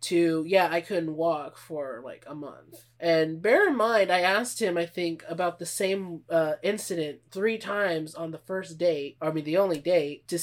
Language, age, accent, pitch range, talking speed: English, 20-39, American, 155-195 Hz, 205 wpm